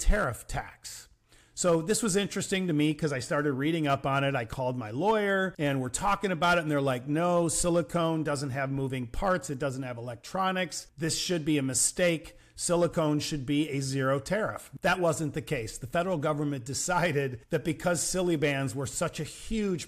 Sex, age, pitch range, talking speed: male, 40-59, 135-170 Hz, 195 wpm